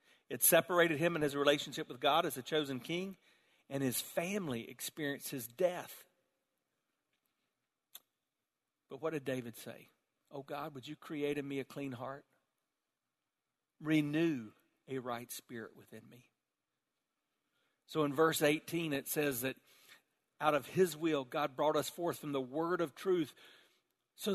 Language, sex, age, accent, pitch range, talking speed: English, male, 50-69, American, 130-165 Hz, 150 wpm